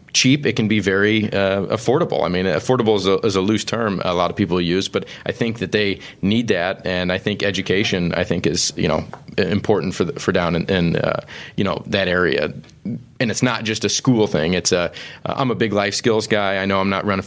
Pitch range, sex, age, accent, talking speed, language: 95-115 Hz, male, 30-49, American, 240 wpm, English